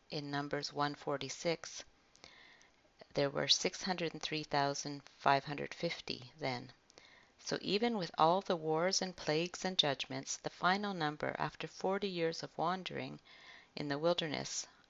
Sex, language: female, English